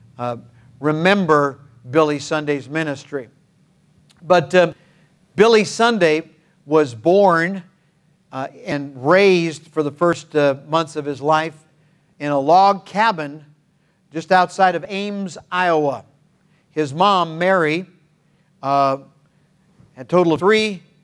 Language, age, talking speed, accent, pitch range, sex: English, 50-69, 115 wpm, American, 150-185 Hz, male